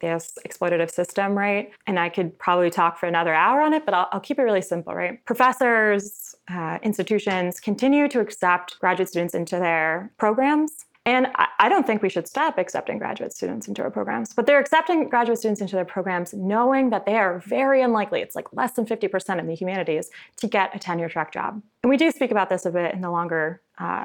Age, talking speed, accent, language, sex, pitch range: 20-39, 215 wpm, American, English, female, 180-240 Hz